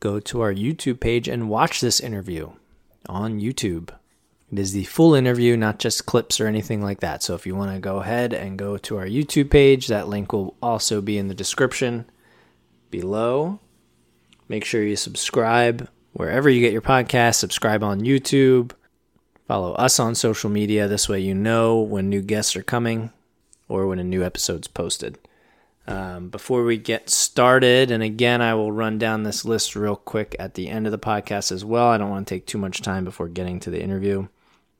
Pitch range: 100-120 Hz